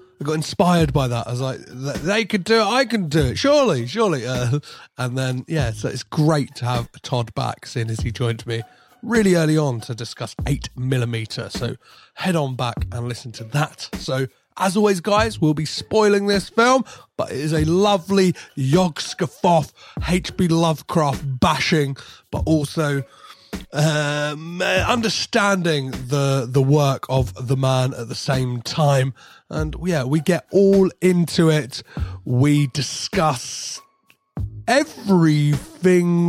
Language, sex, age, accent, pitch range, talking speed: English, male, 30-49, British, 120-165 Hz, 150 wpm